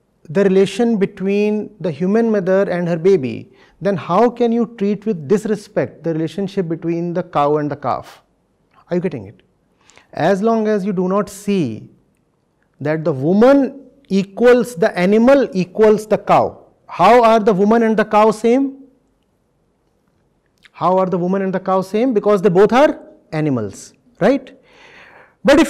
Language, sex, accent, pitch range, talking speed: English, male, Indian, 195-260 Hz, 160 wpm